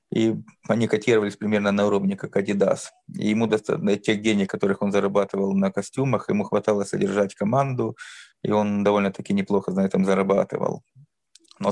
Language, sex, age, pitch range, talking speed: Russian, male, 20-39, 100-130 Hz, 155 wpm